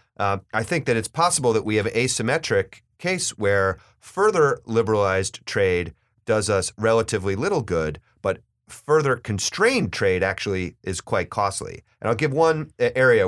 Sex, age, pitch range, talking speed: male, 30-49, 100-125 Hz, 155 wpm